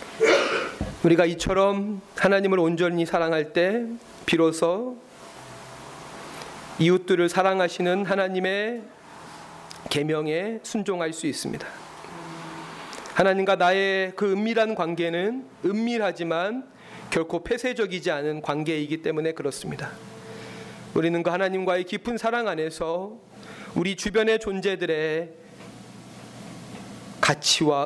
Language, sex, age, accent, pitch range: Korean, male, 30-49, native, 165-215 Hz